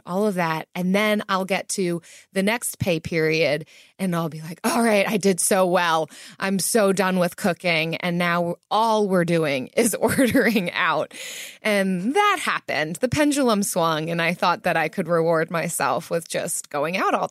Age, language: 20-39, English